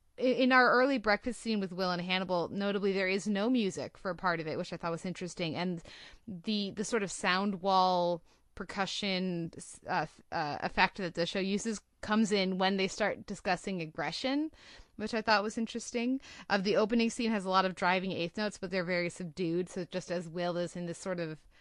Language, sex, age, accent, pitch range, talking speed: English, female, 20-39, American, 180-215 Hz, 210 wpm